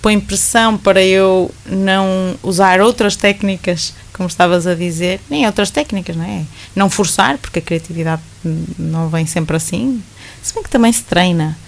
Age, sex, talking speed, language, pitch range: 20-39, female, 165 wpm, Portuguese, 165-195 Hz